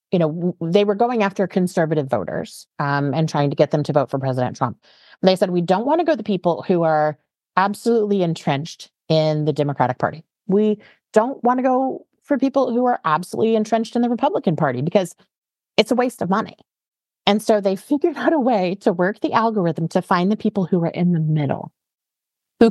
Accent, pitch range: American, 155-210 Hz